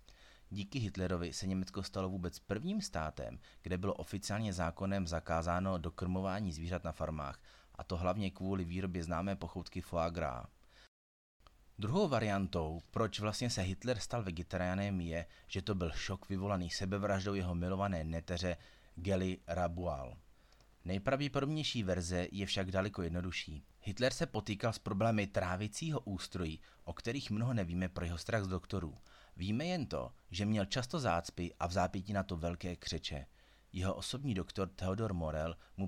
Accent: native